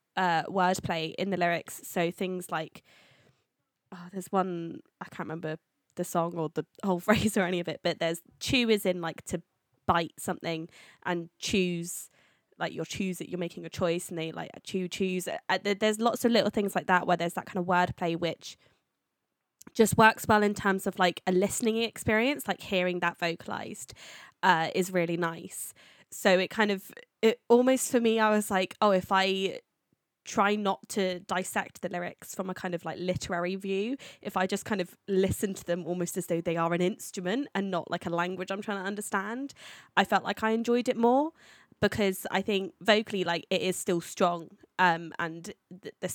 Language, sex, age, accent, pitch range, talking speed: English, female, 20-39, British, 175-200 Hz, 195 wpm